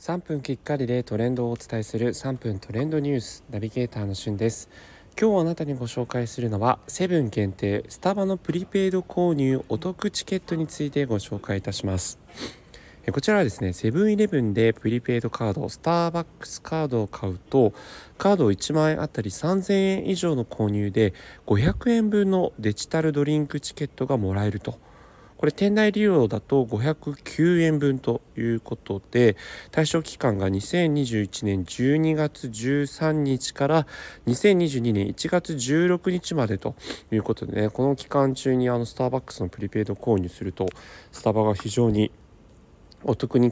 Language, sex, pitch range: Japanese, male, 105-155 Hz